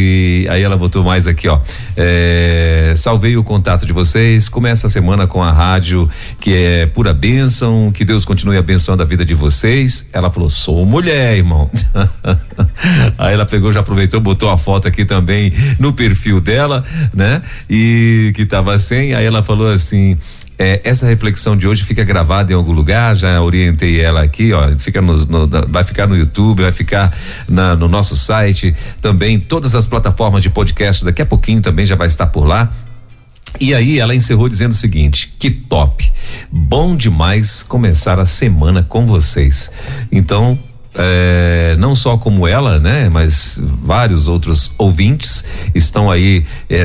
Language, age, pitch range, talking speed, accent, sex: Portuguese, 40-59, 90-115 Hz, 170 wpm, Brazilian, male